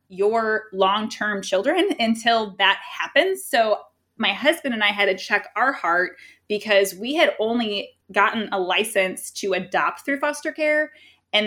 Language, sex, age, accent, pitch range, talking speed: English, female, 20-39, American, 200-255 Hz, 150 wpm